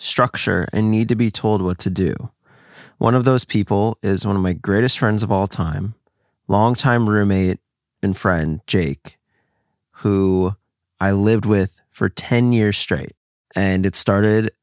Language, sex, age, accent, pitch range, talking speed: English, male, 20-39, American, 100-125 Hz, 155 wpm